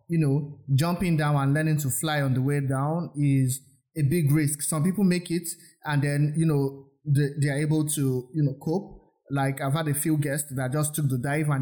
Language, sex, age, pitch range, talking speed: English, male, 20-39, 140-160 Hz, 225 wpm